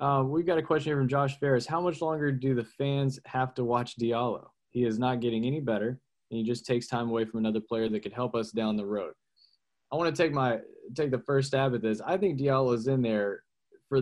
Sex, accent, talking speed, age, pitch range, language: male, American, 255 wpm, 20-39, 110-140 Hz, English